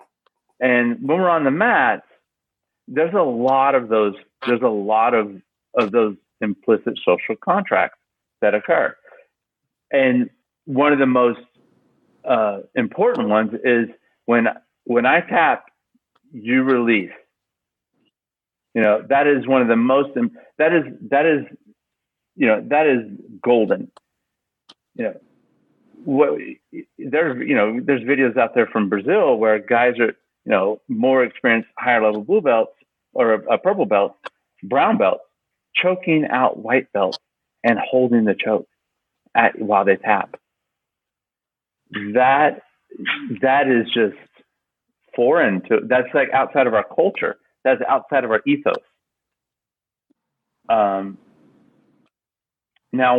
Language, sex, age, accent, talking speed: English, male, 50-69, American, 130 wpm